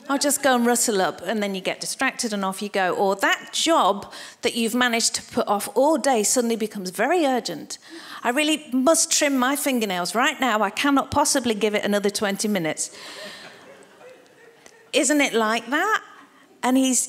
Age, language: 50-69, English